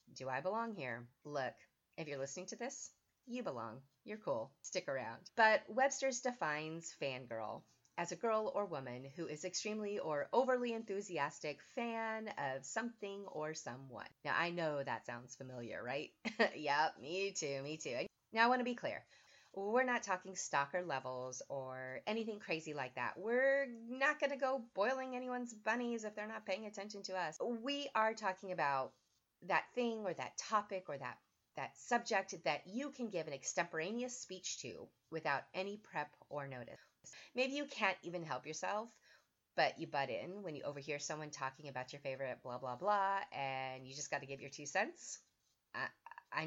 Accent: American